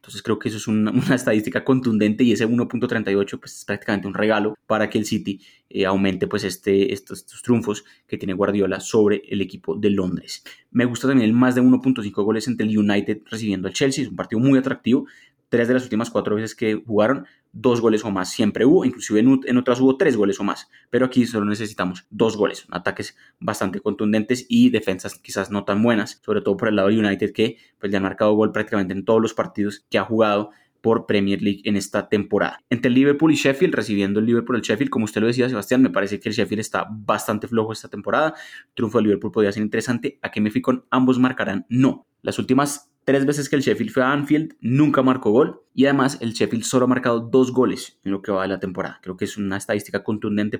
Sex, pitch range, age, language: male, 100-125 Hz, 20-39, Spanish